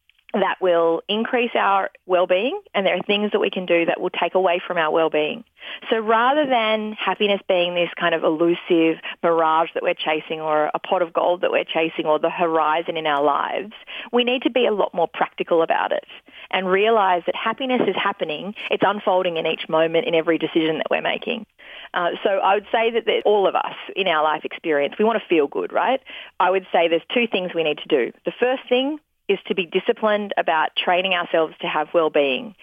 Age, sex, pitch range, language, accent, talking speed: 30-49, female, 160-205 Hz, English, Australian, 215 wpm